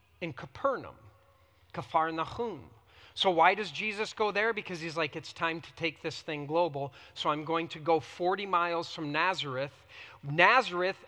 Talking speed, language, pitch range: 155 wpm, English, 165-235 Hz